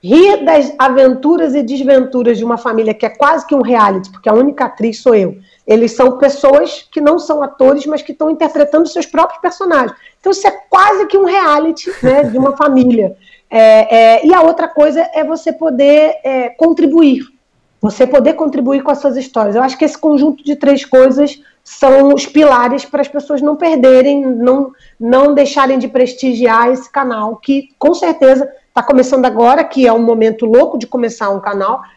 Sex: female